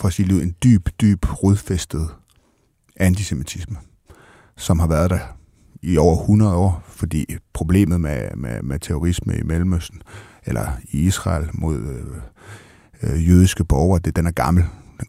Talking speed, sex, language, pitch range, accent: 145 wpm, male, Danish, 85-100 Hz, native